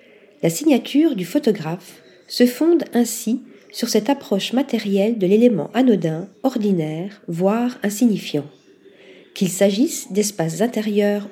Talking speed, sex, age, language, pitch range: 110 wpm, female, 40-59, French, 190-250 Hz